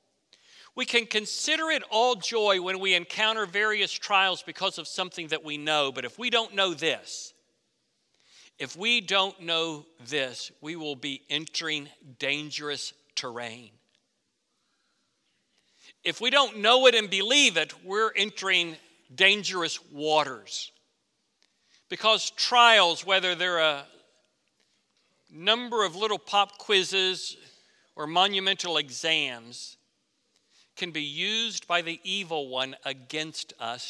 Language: English